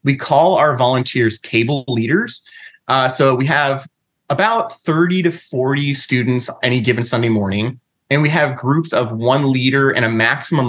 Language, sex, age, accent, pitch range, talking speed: English, male, 20-39, American, 120-165 Hz, 165 wpm